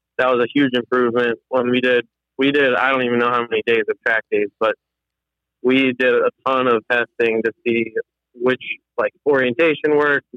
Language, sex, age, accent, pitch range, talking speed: English, male, 20-39, American, 115-140 Hz, 190 wpm